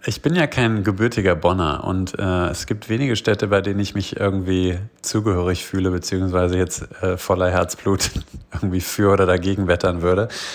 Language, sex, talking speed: German, male, 170 wpm